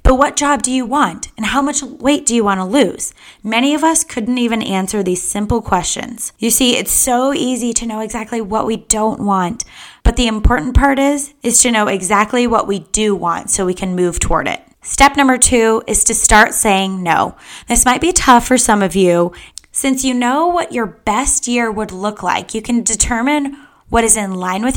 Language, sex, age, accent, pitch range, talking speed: English, female, 10-29, American, 205-255 Hz, 215 wpm